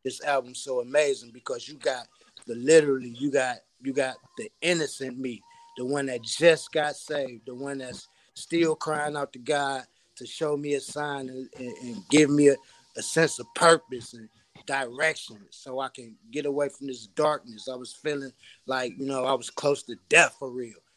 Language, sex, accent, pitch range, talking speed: English, male, American, 130-150 Hz, 190 wpm